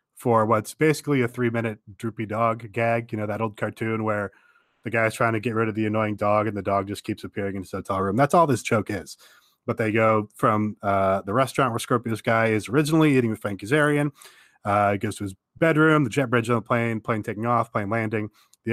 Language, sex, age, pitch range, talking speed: English, male, 20-39, 105-125 Hz, 230 wpm